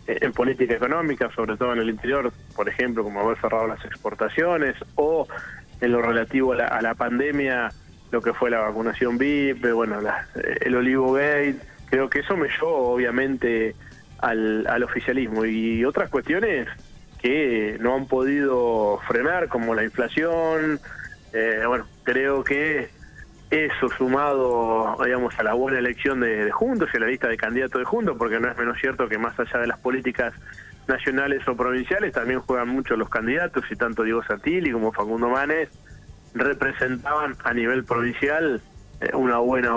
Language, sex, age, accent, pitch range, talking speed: Spanish, male, 20-39, Argentinian, 115-140 Hz, 165 wpm